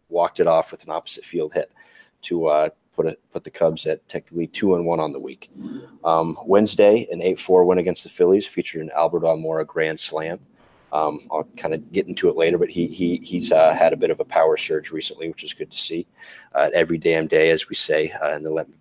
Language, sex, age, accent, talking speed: English, male, 30-49, American, 245 wpm